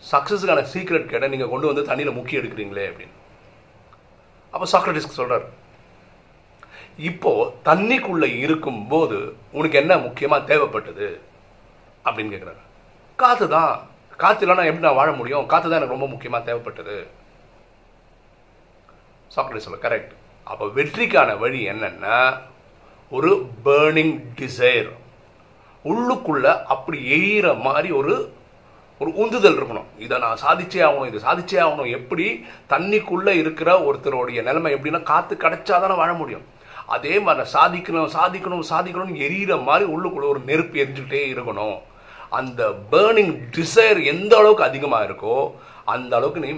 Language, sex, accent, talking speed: Tamil, male, native, 45 wpm